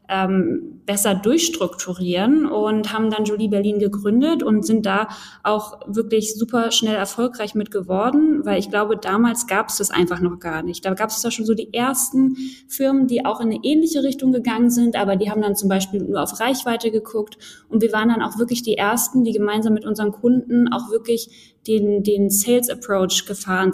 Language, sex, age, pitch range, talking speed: German, female, 20-39, 205-240 Hz, 190 wpm